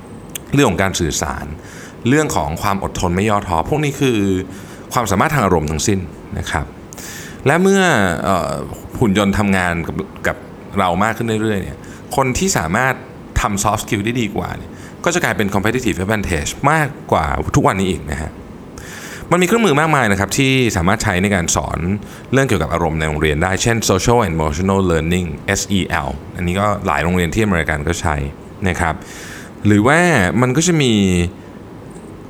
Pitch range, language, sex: 85-120 Hz, Thai, male